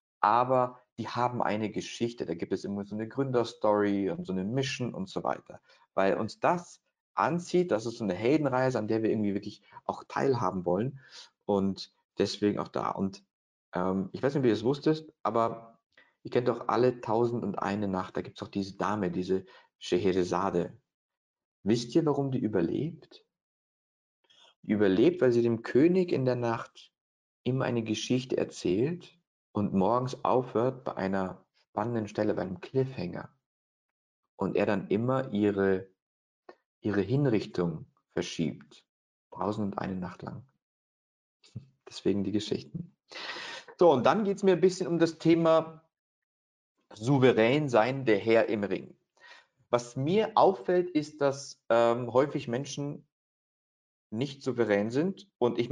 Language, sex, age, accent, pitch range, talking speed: German, male, 50-69, German, 100-135 Hz, 150 wpm